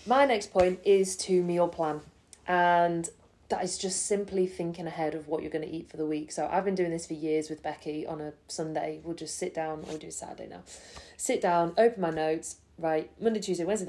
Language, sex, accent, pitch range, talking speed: English, female, British, 160-185 Hz, 235 wpm